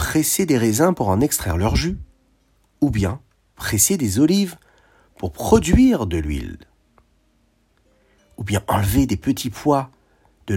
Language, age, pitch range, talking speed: French, 50-69, 95-155 Hz, 135 wpm